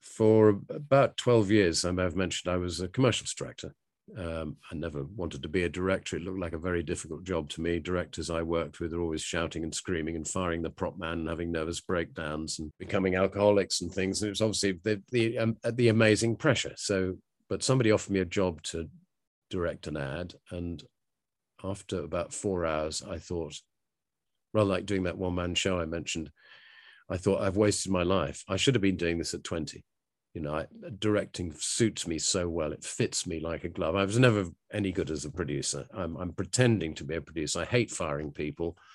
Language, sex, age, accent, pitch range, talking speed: English, male, 50-69, British, 85-105 Hz, 210 wpm